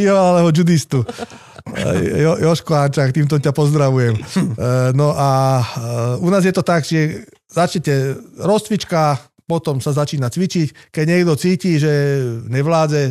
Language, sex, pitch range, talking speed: Slovak, male, 130-155 Hz, 125 wpm